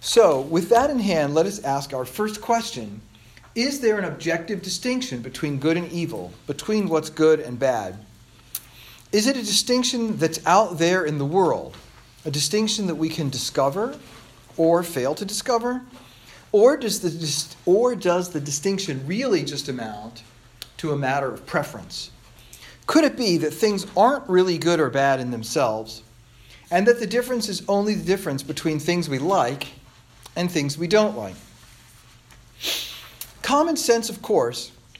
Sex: male